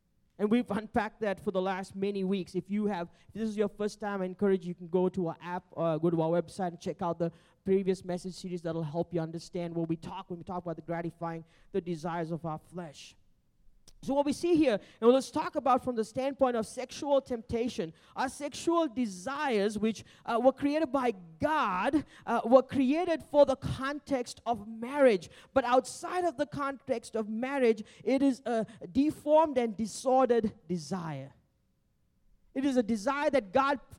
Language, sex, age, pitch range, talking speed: English, male, 30-49, 190-275 Hz, 190 wpm